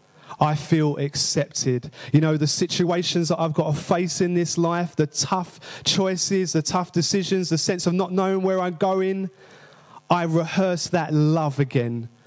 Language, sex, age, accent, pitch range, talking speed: English, male, 30-49, British, 135-170 Hz, 165 wpm